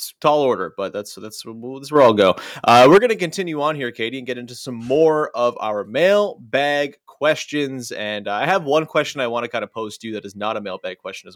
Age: 30-49